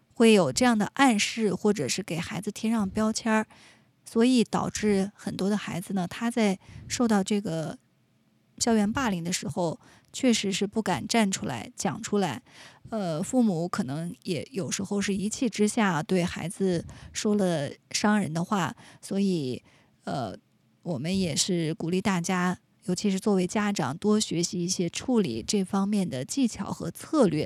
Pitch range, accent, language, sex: 180-220 Hz, native, Chinese, female